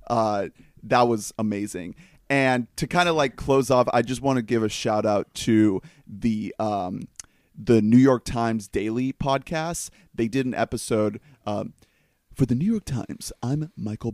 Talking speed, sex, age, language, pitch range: 170 wpm, male, 30-49, English, 110-130 Hz